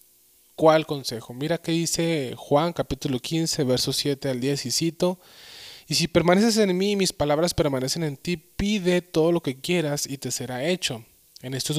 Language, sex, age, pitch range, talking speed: Spanish, male, 20-39, 110-165 Hz, 190 wpm